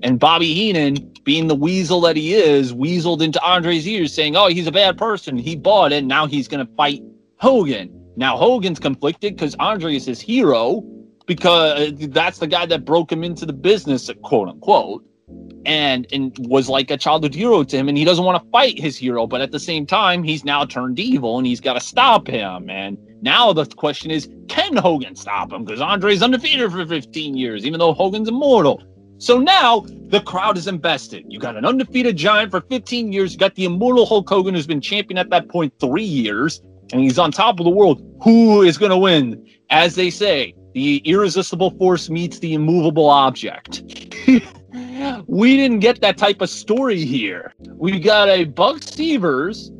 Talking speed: 195 wpm